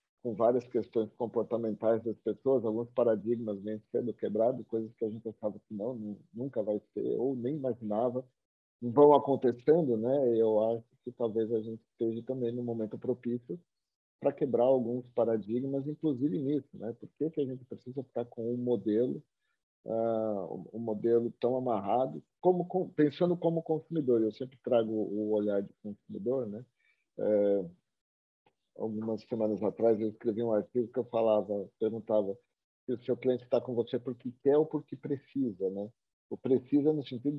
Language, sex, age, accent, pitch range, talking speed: Portuguese, male, 40-59, Brazilian, 110-140 Hz, 160 wpm